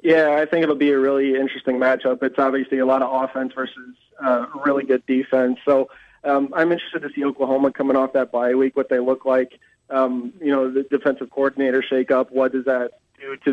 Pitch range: 125-135 Hz